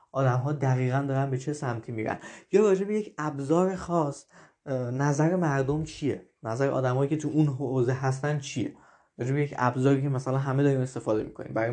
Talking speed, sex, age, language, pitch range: 175 wpm, male, 20-39, Persian, 130-160 Hz